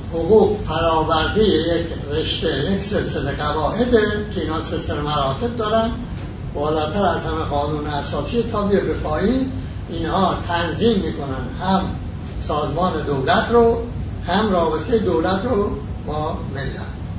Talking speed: 110 wpm